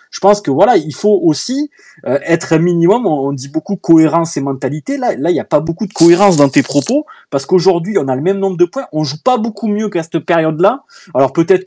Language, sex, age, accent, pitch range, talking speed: French, male, 20-39, French, 145-190 Hz, 255 wpm